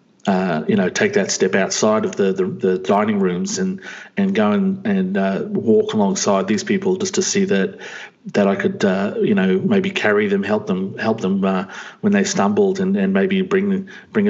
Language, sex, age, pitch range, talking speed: English, male, 40-59, 190-210 Hz, 205 wpm